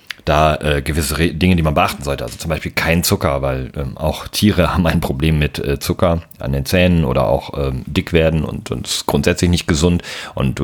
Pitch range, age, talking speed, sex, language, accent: 75-95 Hz, 40-59, 220 wpm, male, German, German